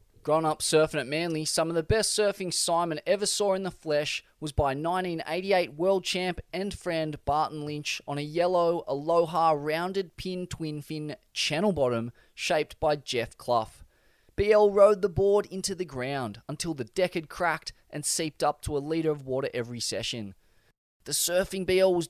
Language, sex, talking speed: English, male, 175 wpm